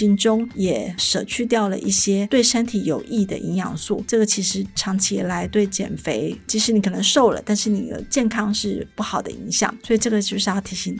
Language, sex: Chinese, female